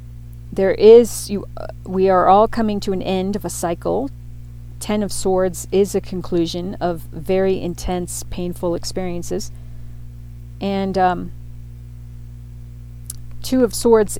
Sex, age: female, 40-59